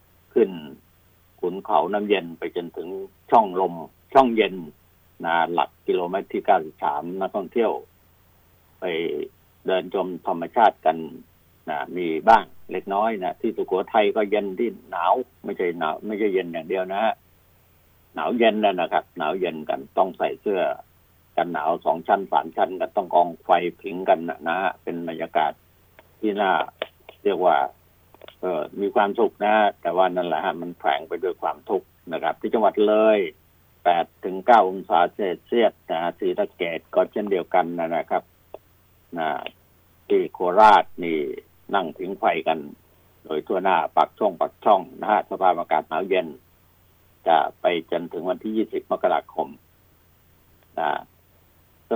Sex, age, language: male, 60-79, Thai